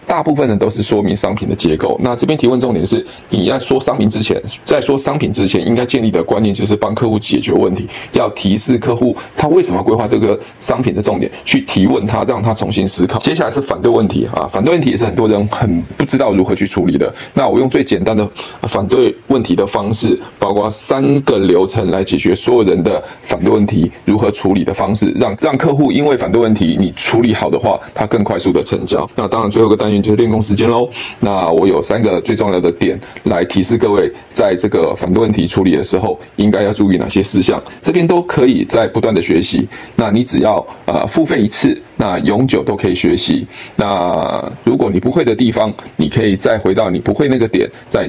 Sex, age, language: male, 20-39, Chinese